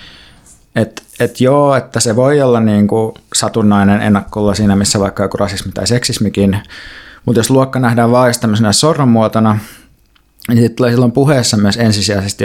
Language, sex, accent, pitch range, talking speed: Finnish, male, native, 100-115 Hz, 155 wpm